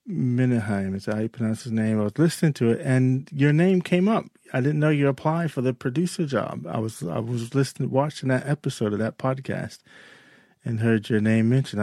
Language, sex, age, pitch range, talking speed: English, male, 40-59, 105-135 Hz, 215 wpm